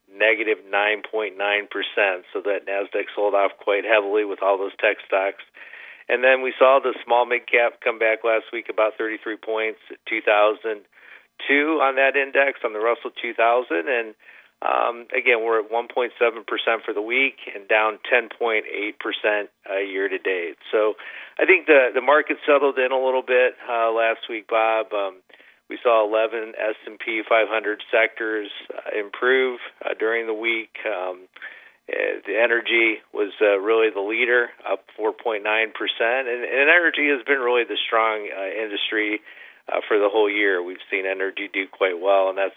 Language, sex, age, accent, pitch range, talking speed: English, male, 40-59, American, 105-135 Hz, 170 wpm